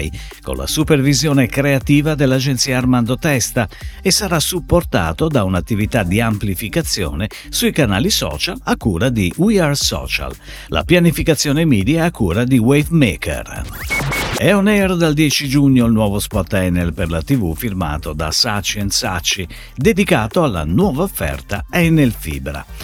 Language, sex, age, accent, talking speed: Italian, male, 50-69, native, 140 wpm